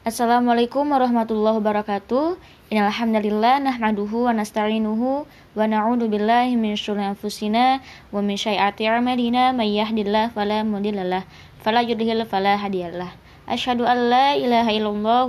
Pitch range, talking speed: 200-235 Hz, 95 wpm